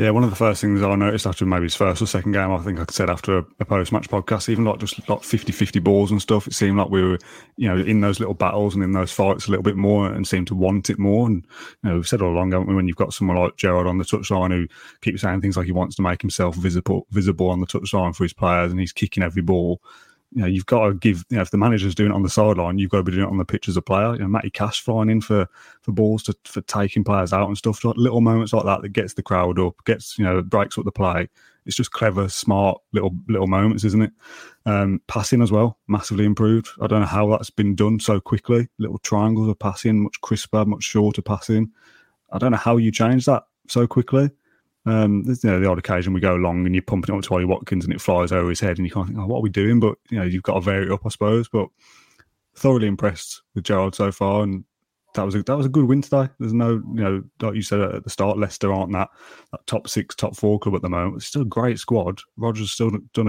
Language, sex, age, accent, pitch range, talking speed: English, male, 30-49, British, 95-110 Hz, 275 wpm